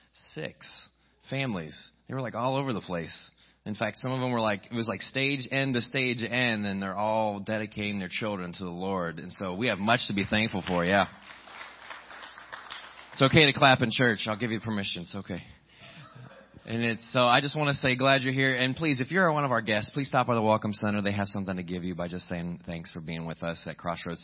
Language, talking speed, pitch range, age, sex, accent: English, 240 wpm, 100-135 Hz, 30-49, male, American